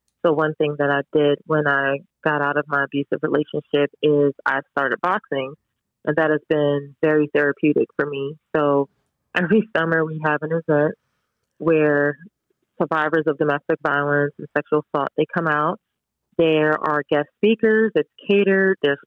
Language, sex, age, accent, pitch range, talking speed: English, female, 30-49, American, 145-160 Hz, 160 wpm